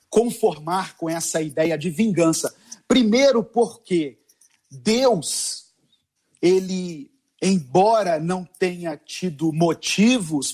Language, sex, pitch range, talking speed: Portuguese, male, 165-215 Hz, 85 wpm